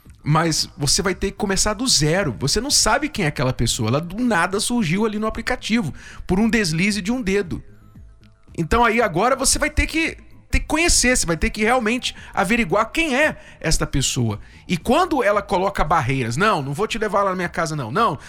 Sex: male